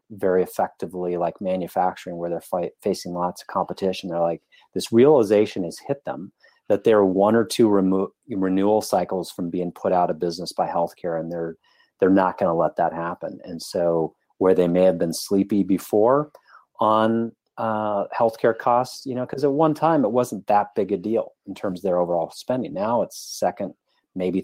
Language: English